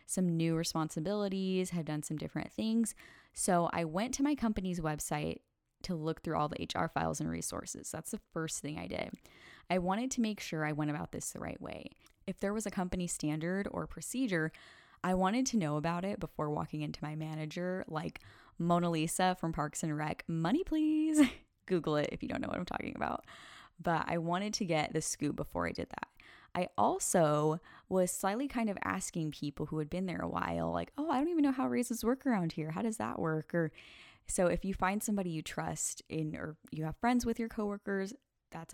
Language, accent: English, American